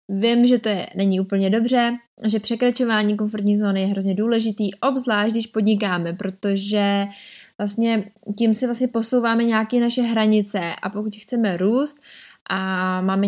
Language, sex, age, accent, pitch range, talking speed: Czech, female, 20-39, native, 200-230 Hz, 145 wpm